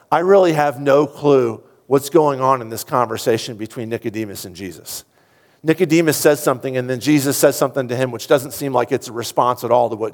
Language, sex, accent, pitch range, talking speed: English, male, American, 125-155 Hz, 215 wpm